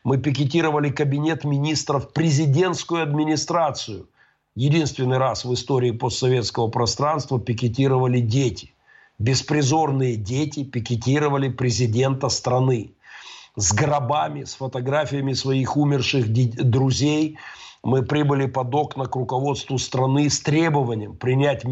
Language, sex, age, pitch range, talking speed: Russian, male, 50-69, 115-140 Hz, 100 wpm